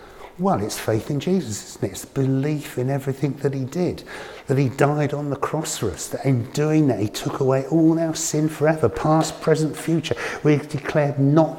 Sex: male